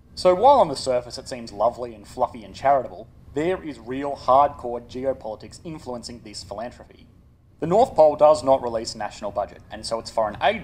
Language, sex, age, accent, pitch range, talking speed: English, male, 30-49, Australian, 110-150 Hz, 185 wpm